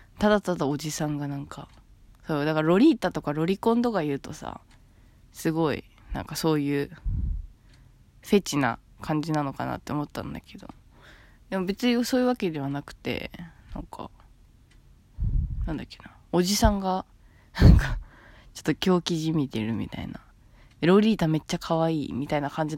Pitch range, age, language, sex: 145-210 Hz, 20-39, Japanese, female